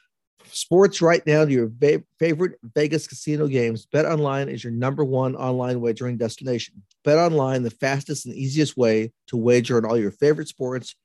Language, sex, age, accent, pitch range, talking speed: English, male, 50-69, American, 115-135 Hz, 175 wpm